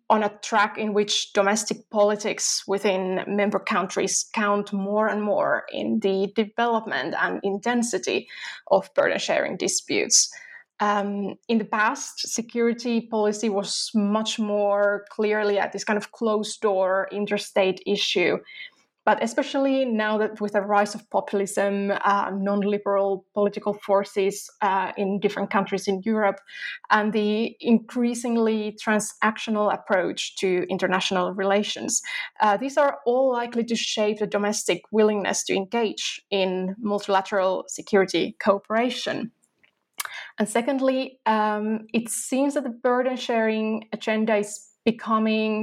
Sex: female